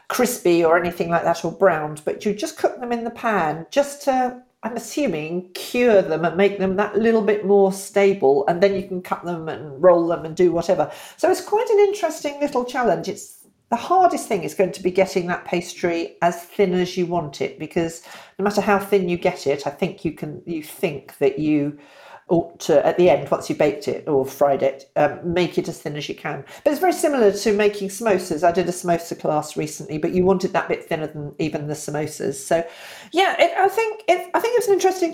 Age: 50-69